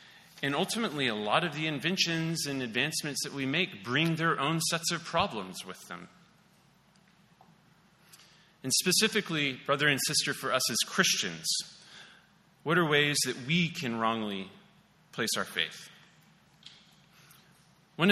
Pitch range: 135-180 Hz